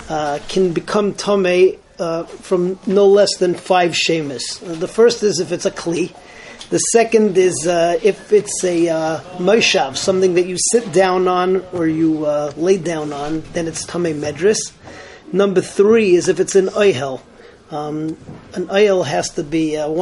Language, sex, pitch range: English, male, 165-195 Hz